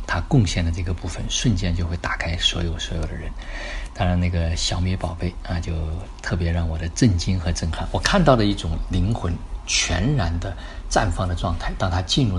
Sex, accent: male, native